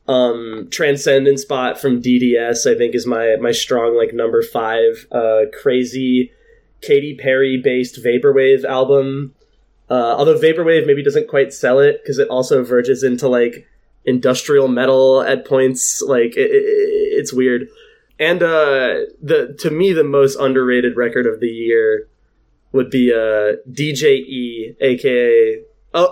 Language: English